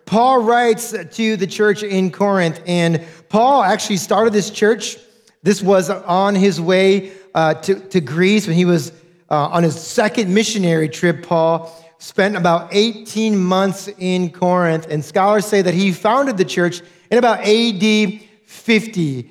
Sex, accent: male, American